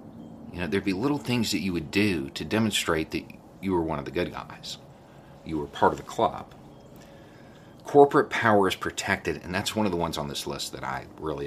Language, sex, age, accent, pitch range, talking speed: English, male, 40-59, American, 80-105 Hz, 220 wpm